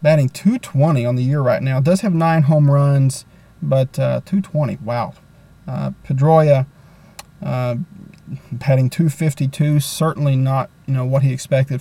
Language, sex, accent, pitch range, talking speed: English, male, American, 135-160 Hz, 140 wpm